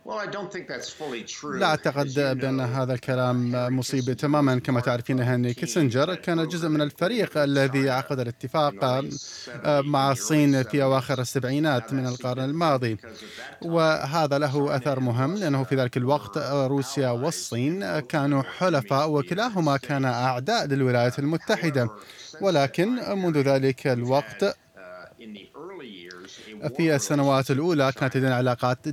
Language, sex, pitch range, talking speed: Arabic, male, 130-150 Hz, 110 wpm